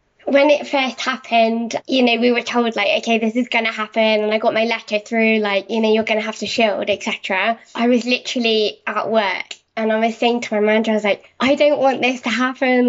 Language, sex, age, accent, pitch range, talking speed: English, female, 10-29, British, 220-255 Hz, 245 wpm